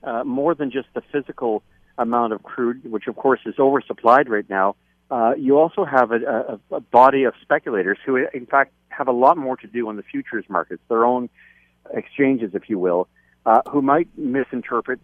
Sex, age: male, 50-69